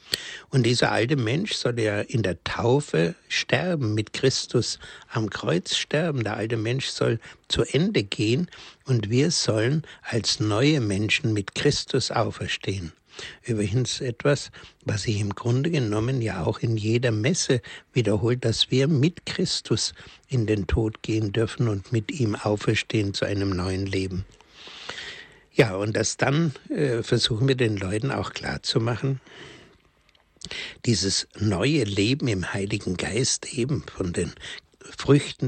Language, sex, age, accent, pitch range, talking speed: German, male, 60-79, German, 100-125 Hz, 140 wpm